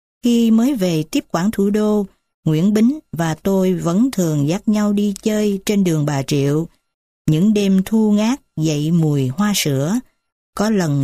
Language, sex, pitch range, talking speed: Vietnamese, female, 150-210 Hz, 170 wpm